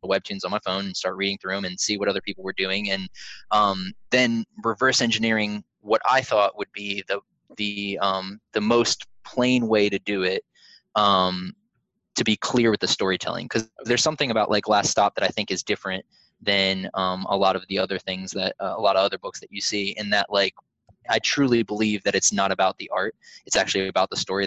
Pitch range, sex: 95-110 Hz, male